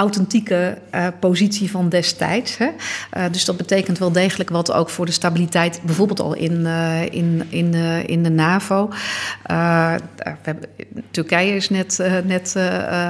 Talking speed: 165 wpm